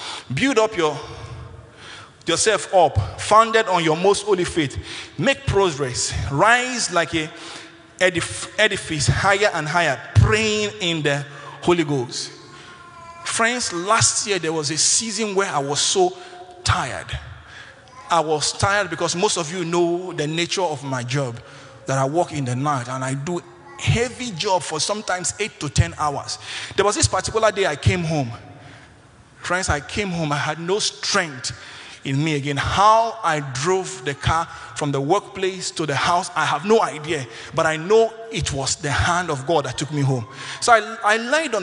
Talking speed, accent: 175 wpm, Nigerian